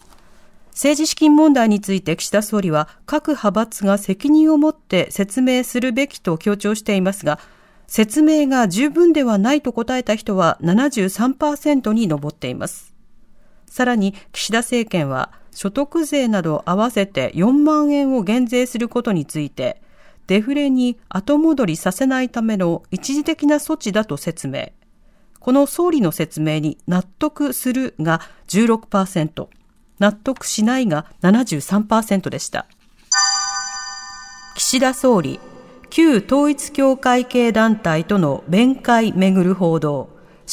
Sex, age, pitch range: female, 40-59, 185-275 Hz